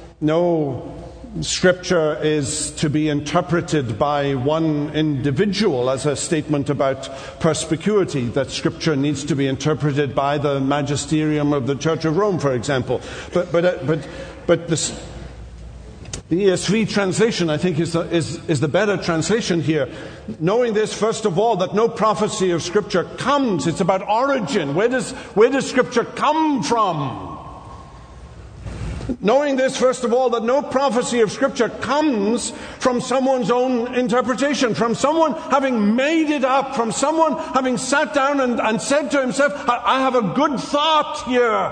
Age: 60-79